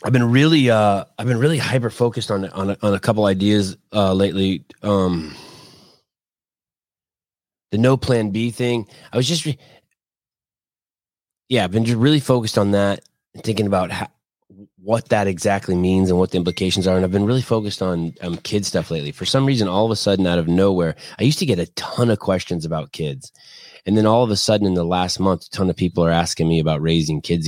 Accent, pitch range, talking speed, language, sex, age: American, 85-115 Hz, 210 wpm, English, male, 20-39